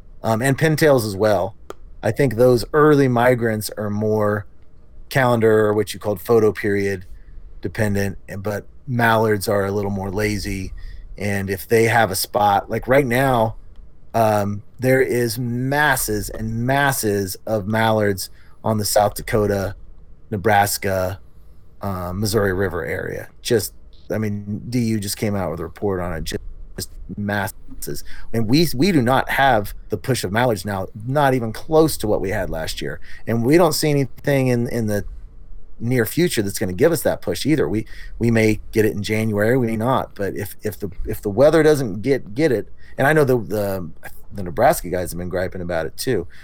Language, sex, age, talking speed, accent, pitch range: English, male, 30-49, 180 wpm, American, 90-115 Hz